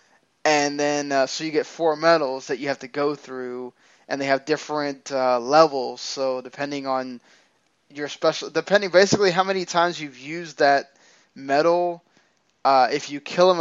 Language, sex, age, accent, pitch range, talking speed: English, male, 10-29, American, 135-160 Hz, 170 wpm